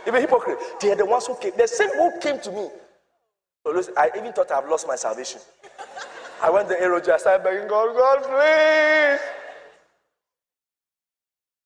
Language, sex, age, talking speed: English, male, 30-49, 170 wpm